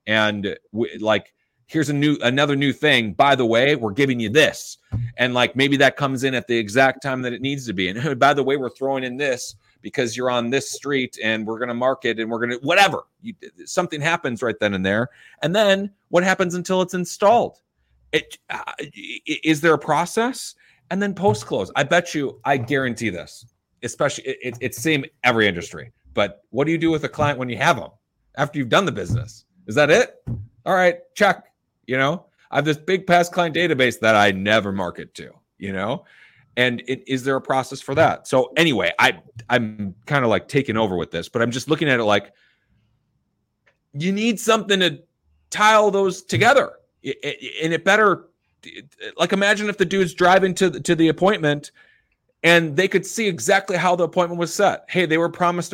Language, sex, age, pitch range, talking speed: English, male, 30-49, 120-175 Hz, 200 wpm